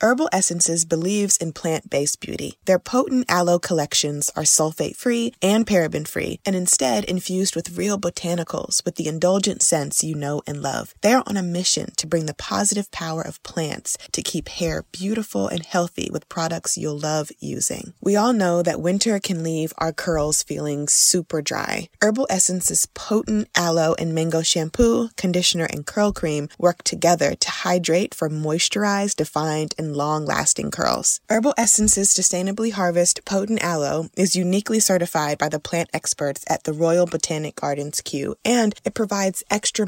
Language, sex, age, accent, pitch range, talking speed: English, female, 20-39, American, 160-205 Hz, 160 wpm